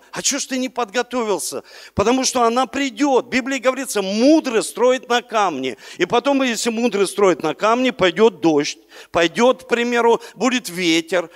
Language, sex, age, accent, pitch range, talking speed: Russian, male, 50-69, native, 205-255 Hz, 165 wpm